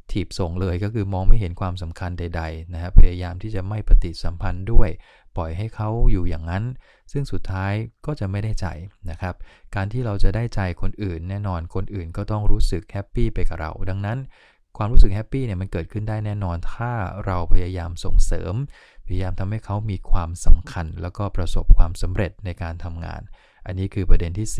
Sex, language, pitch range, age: male, English, 90-110 Hz, 20-39